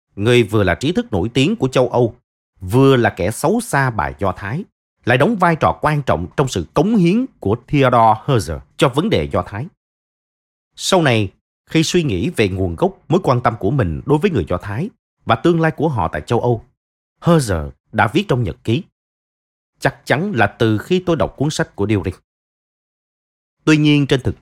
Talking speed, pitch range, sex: 205 wpm, 100-150 Hz, male